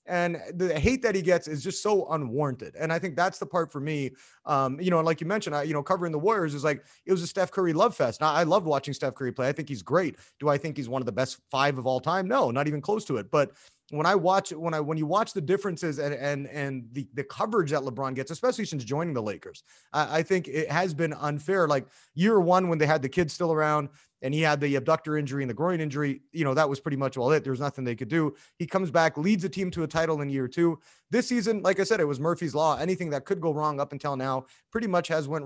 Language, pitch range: English, 145-180 Hz